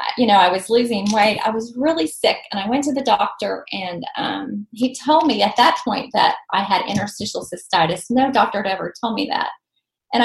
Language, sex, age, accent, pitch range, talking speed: English, female, 30-49, American, 205-260 Hz, 215 wpm